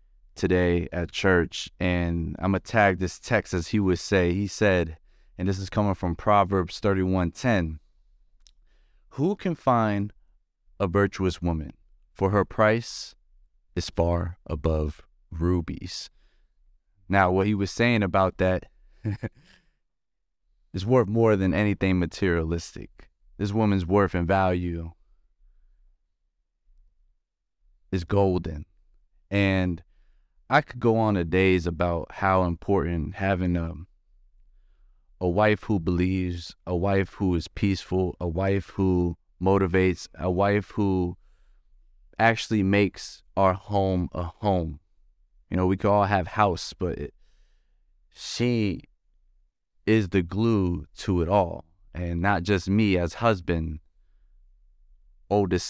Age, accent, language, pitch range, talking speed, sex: 30-49, American, English, 85-100 Hz, 120 wpm, male